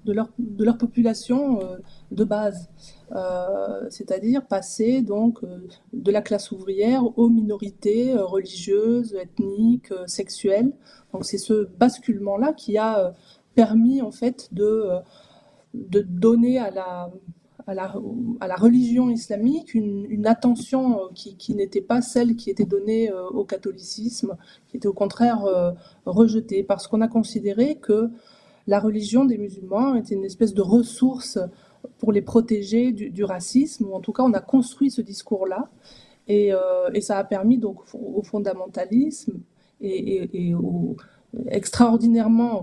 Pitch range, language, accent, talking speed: 200-240 Hz, French, French, 140 wpm